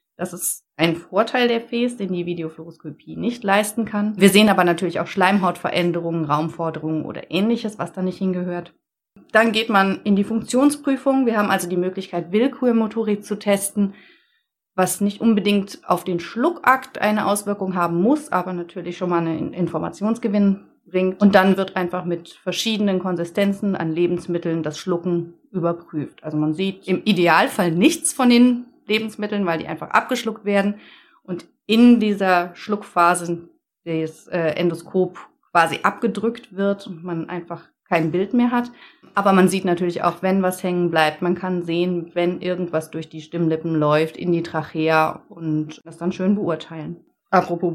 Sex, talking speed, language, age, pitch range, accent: female, 155 wpm, German, 30-49, 175-215 Hz, German